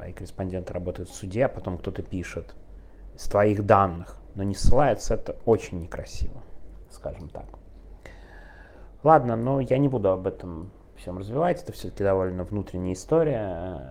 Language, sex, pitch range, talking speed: Russian, male, 90-130 Hz, 145 wpm